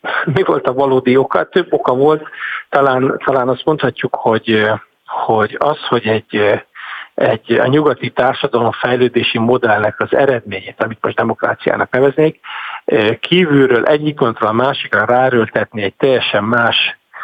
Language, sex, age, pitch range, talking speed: Hungarian, male, 50-69, 125-155 Hz, 125 wpm